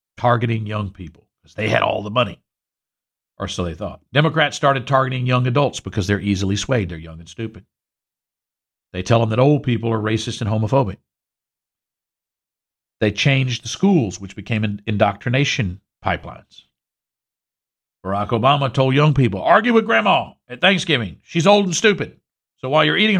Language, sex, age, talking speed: English, male, 50-69, 160 wpm